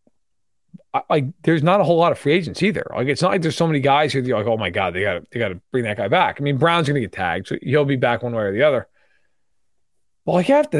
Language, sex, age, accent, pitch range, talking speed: English, male, 40-59, American, 125-165 Hz, 295 wpm